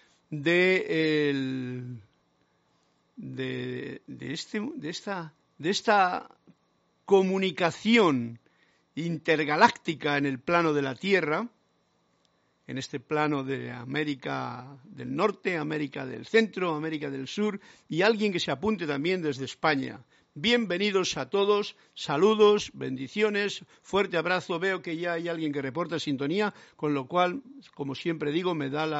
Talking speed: 130 wpm